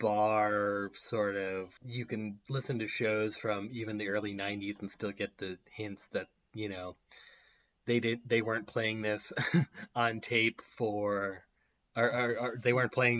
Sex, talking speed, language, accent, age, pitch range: male, 170 wpm, English, American, 20-39, 105-130 Hz